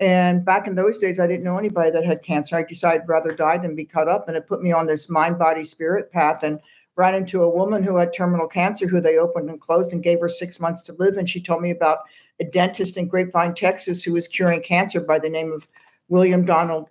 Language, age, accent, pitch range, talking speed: English, 60-79, American, 165-190 Hz, 250 wpm